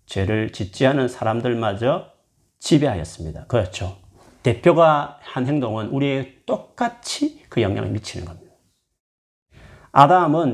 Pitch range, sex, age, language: 95-150 Hz, male, 40-59, Korean